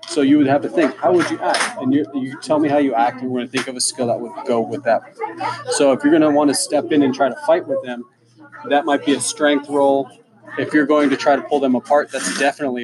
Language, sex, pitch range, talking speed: English, male, 125-155 Hz, 285 wpm